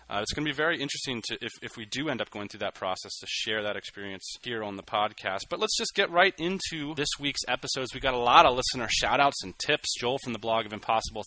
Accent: American